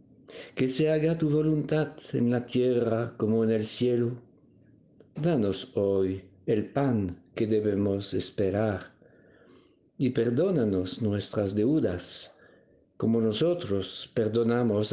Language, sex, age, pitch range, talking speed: Spanish, male, 60-79, 95-135 Hz, 105 wpm